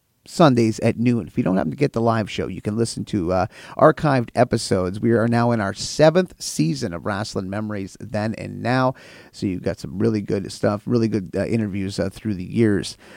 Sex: male